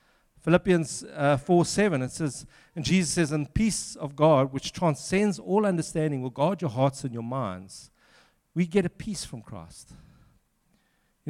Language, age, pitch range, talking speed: English, 50-69, 135-185 Hz, 155 wpm